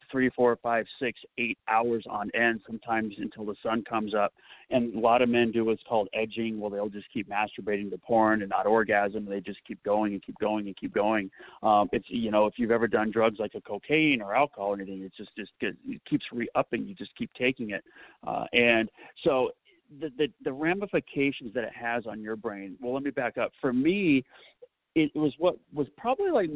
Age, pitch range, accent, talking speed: 40-59, 110-135 Hz, American, 220 wpm